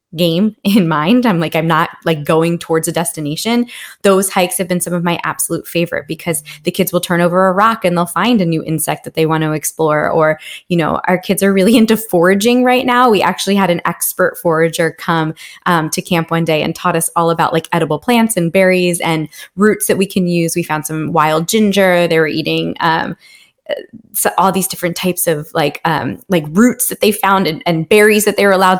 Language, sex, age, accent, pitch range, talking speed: English, female, 20-39, American, 165-195 Hz, 225 wpm